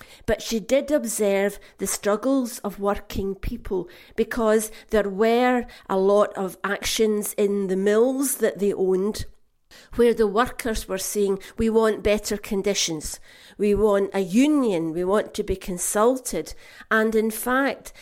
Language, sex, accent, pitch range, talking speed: English, female, British, 200-235 Hz, 145 wpm